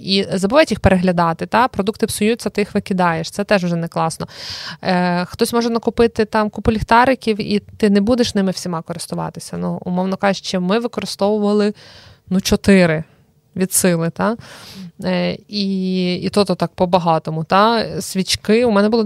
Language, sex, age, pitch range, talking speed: Ukrainian, female, 20-39, 170-205 Hz, 155 wpm